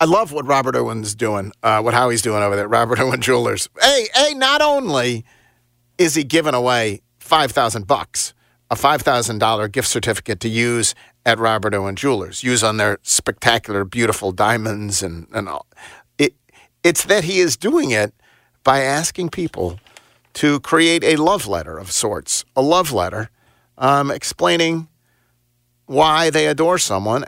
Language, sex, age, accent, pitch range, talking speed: English, male, 50-69, American, 115-165 Hz, 155 wpm